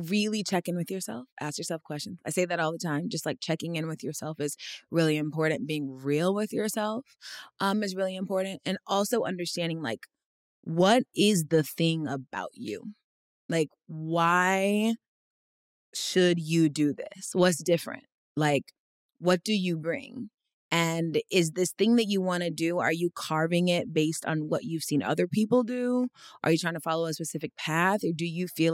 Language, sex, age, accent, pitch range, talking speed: English, female, 20-39, American, 150-185 Hz, 180 wpm